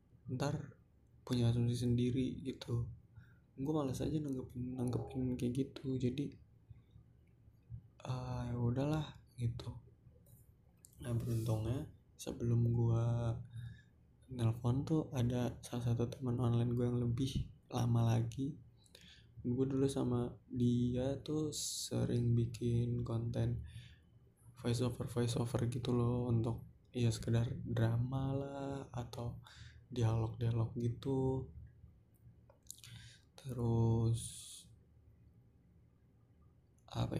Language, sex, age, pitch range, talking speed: Malay, male, 20-39, 115-130 Hz, 90 wpm